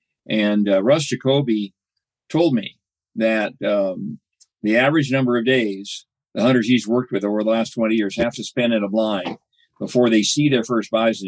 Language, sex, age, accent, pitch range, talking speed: English, male, 50-69, American, 110-135 Hz, 185 wpm